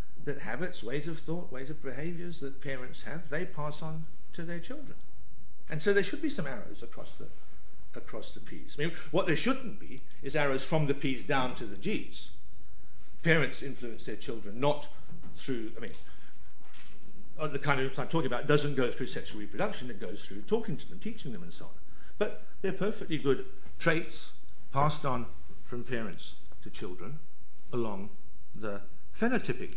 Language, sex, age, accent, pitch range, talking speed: English, male, 50-69, British, 130-170 Hz, 180 wpm